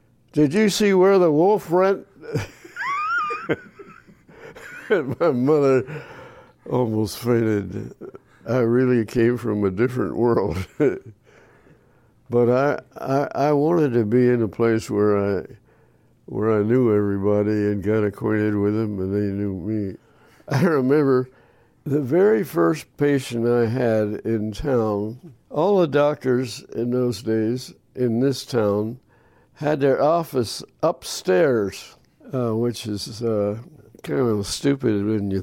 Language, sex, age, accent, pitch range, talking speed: English, male, 60-79, American, 110-135 Hz, 125 wpm